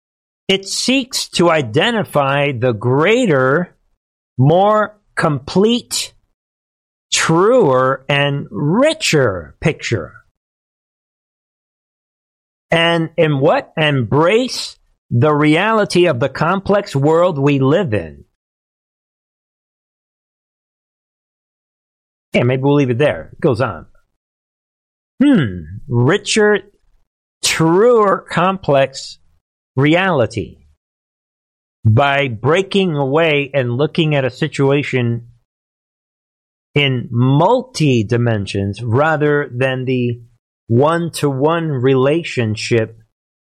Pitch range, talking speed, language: 125-170 Hz, 80 wpm, English